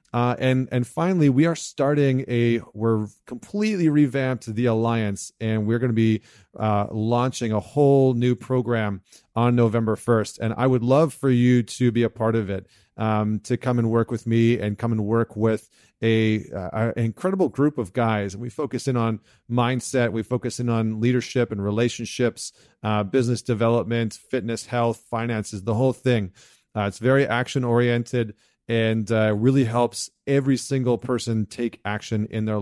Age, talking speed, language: 30-49, 180 wpm, English